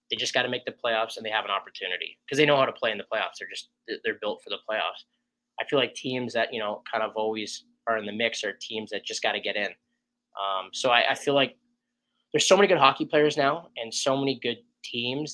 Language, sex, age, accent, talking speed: English, male, 10-29, American, 265 wpm